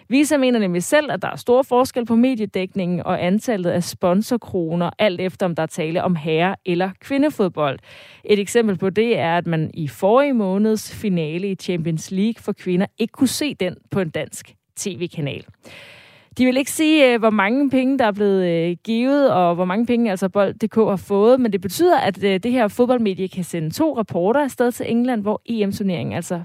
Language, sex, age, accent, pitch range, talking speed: Danish, female, 30-49, native, 180-240 Hz, 195 wpm